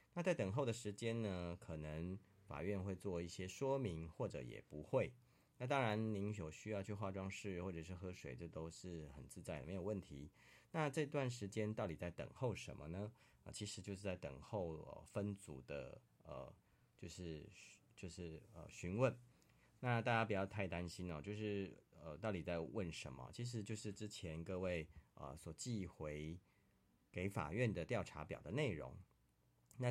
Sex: male